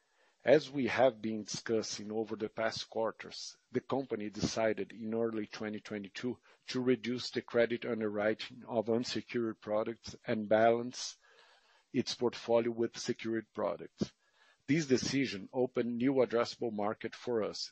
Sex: male